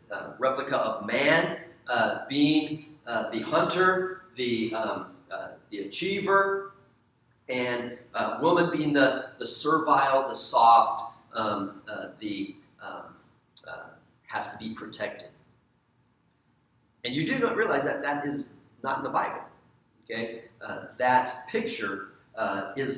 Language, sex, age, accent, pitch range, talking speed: English, male, 40-59, American, 125-185 Hz, 130 wpm